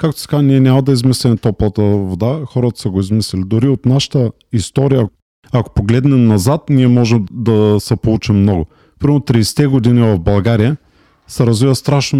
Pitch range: 105-125 Hz